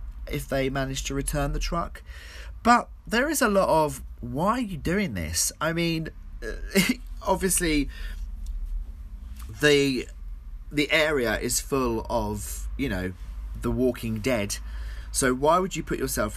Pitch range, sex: 90-145 Hz, male